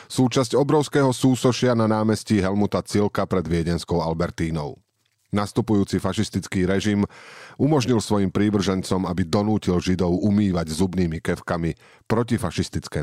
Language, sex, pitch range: Slovak, male, 90-115 Hz